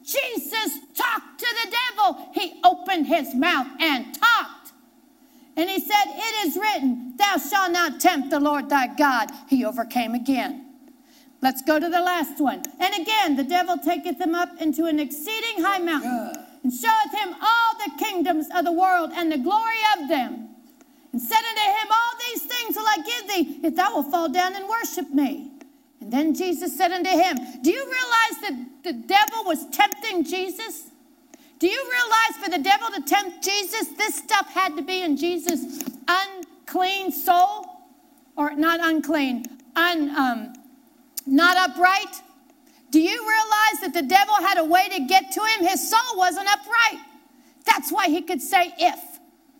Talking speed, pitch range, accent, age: 170 wpm, 285-390 Hz, American, 40-59